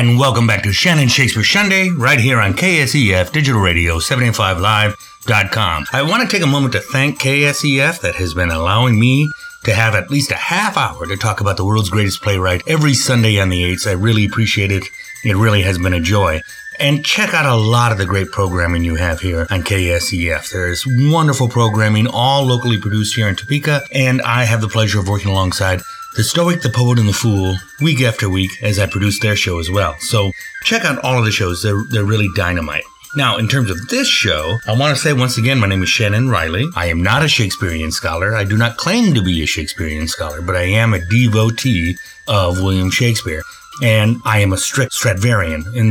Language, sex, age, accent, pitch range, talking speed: English, male, 30-49, American, 95-130 Hz, 215 wpm